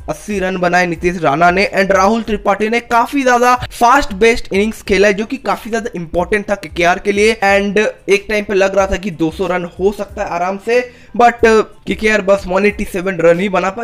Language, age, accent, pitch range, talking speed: Hindi, 20-39, native, 175-210 Hz, 205 wpm